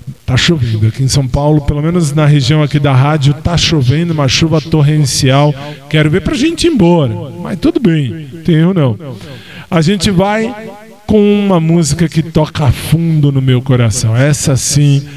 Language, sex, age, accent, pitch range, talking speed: Portuguese, male, 20-39, Brazilian, 125-165 Hz, 175 wpm